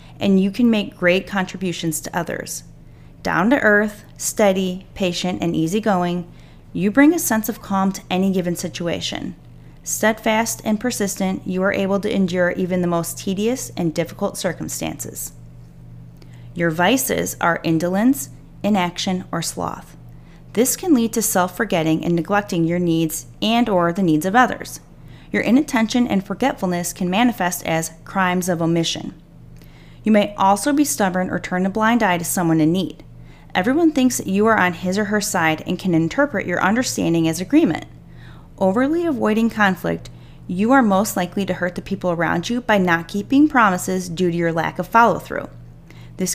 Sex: female